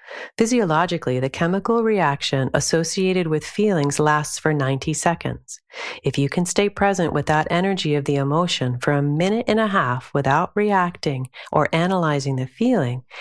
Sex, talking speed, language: female, 155 wpm, English